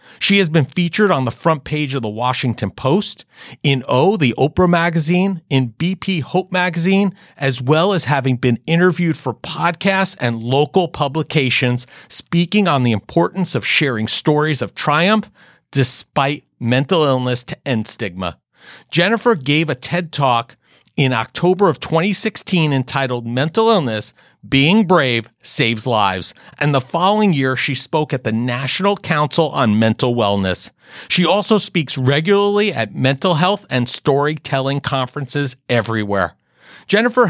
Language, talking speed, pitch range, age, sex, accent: English, 140 wpm, 125-175 Hz, 40-59, male, American